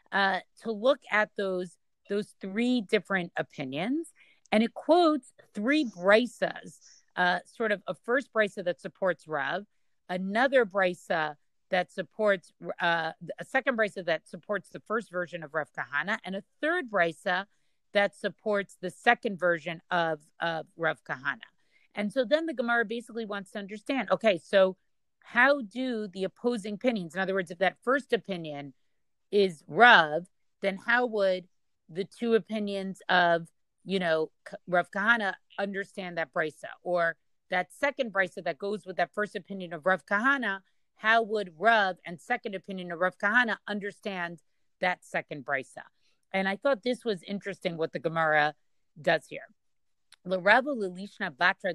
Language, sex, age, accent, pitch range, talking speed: English, female, 50-69, American, 175-220 Hz, 155 wpm